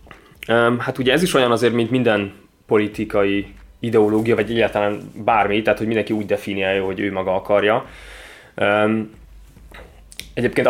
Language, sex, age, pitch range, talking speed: Hungarian, male, 20-39, 95-110 Hz, 130 wpm